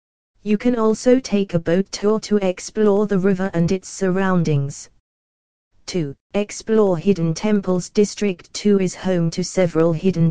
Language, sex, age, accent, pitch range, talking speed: English, female, 20-39, British, 165-205 Hz, 145 wpm